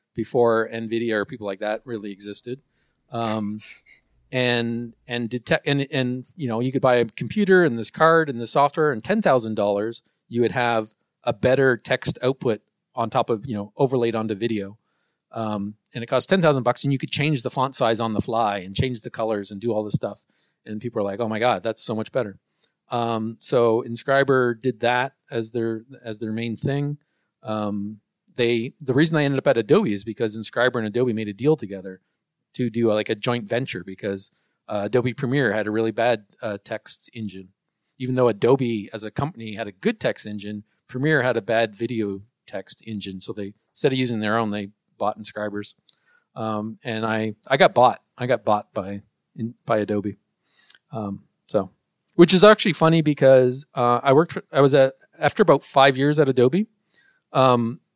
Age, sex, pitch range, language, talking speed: 40-59, male, 110-135 Hz, English, 200 wpm